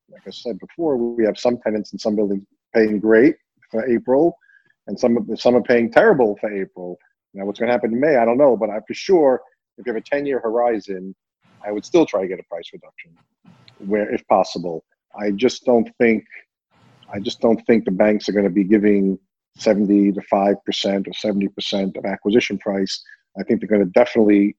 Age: 40-59